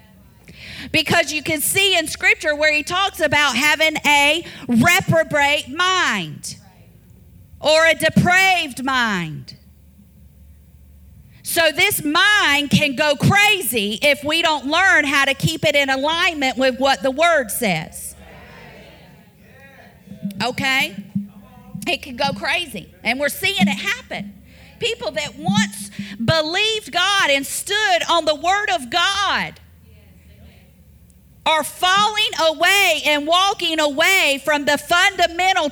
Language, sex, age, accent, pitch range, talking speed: English, female, 40-59, American, 255-340 Hz, 120 wpm